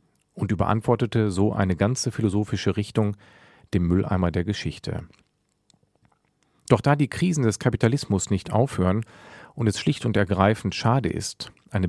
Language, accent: German, German